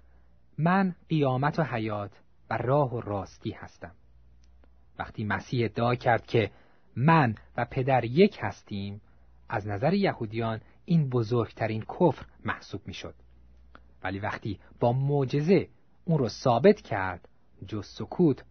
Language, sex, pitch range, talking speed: Persian, male, 90-130 Hz, 125 wpm